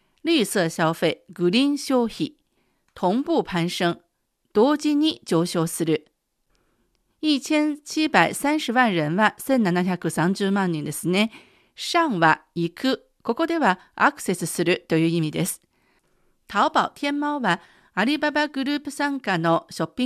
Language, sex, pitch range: Japanese, female, 175-275 Hz